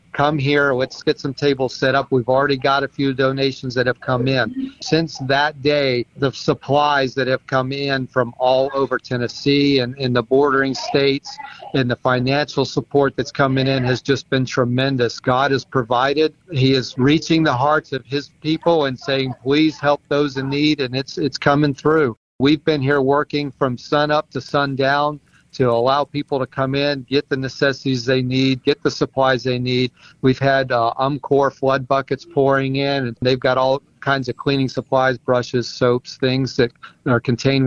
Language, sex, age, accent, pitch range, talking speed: English, male, 40-59, American, 130-145 Hz, 185 wpm